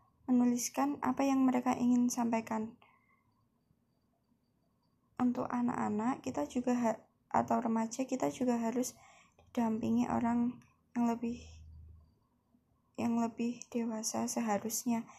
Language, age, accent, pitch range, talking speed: Indonesian, 20-39, native, 225-255 Hz, 95 wpm